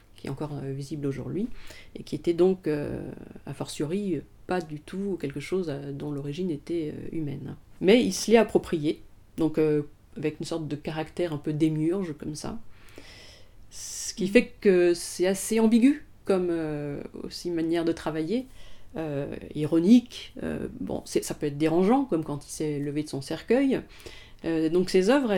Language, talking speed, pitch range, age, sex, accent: French, 170 wpm, 155-205 Hz, 40-59, female, French